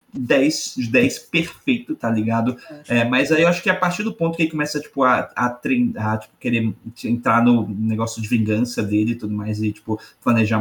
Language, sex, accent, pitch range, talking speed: Portuguese, male, Brazilian, 110-140 Hz, 205 wpm